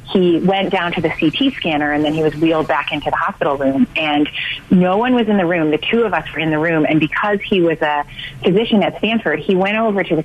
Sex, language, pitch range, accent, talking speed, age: female, English, 150-185 Hz, American, 265 wpm, 30-49